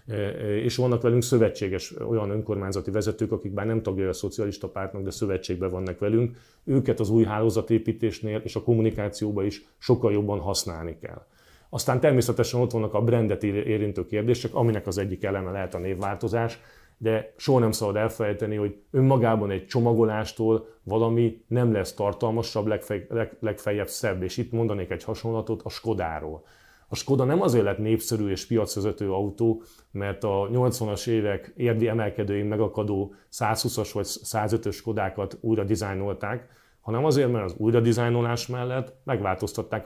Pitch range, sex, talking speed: 100-115 Hz, male, 145 wpm